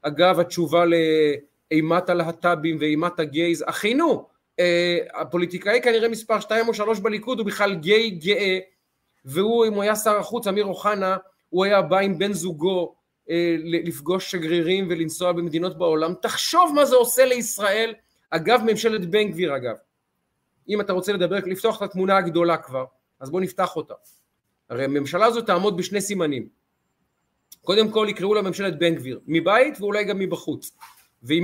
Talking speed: 150 wpm